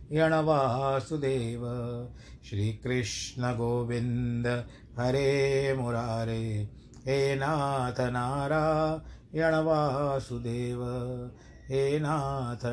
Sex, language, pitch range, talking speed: male, Hindi, 120-140 Hz, 45 wpm